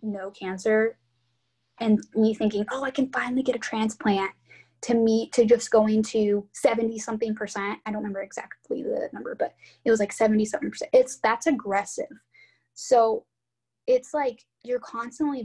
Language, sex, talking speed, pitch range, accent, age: English, female, 155 wpm, 205-280 Hz, American, 10-29